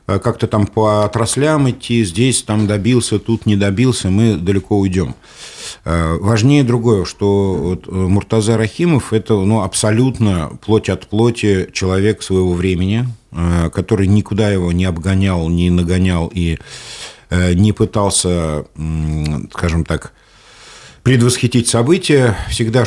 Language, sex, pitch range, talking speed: Russian, male, 85-115 Hz, 110 wpm